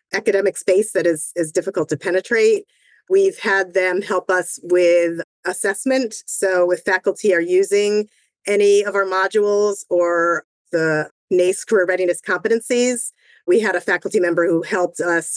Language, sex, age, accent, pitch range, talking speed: English, female, 30-49, American, 170-200 Hz, 150 wpm